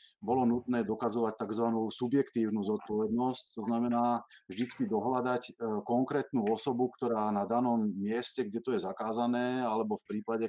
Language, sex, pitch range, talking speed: Slovak, male, 110-120 Hz, 130 wpm